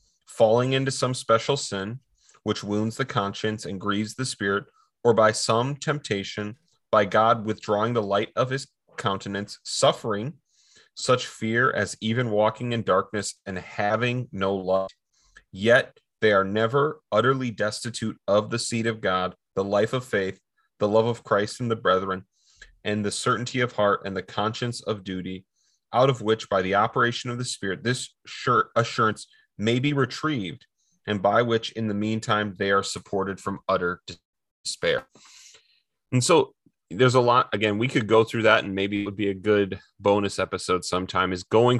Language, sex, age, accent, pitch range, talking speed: English, male, 30-49, American, 100-125 Hz, 170 wpm